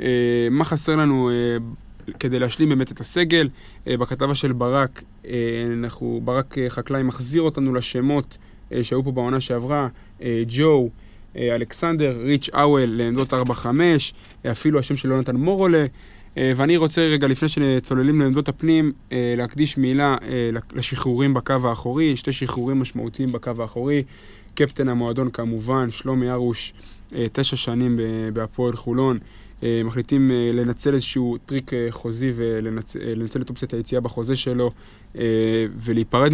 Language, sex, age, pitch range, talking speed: Hebrew, male, 20-39, 120-140 Hz, 120 wpm